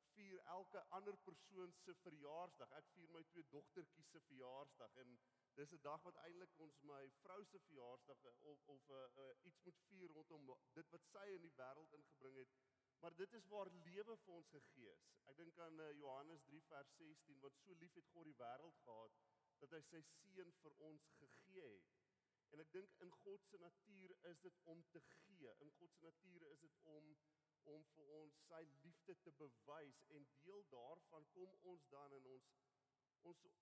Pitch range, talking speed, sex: 145-180 Hz, 185 wpm, male